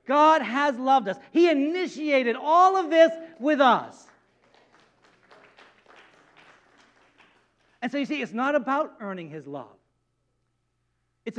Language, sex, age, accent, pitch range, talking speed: English, male, 50-69, American, 200-265 Hz, 115 wpm